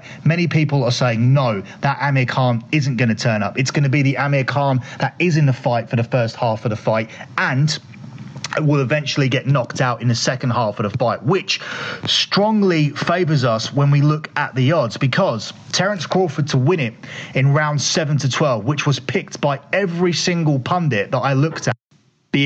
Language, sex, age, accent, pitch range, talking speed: English, male, 30-49, British, 125-150 Hz, 210 wpm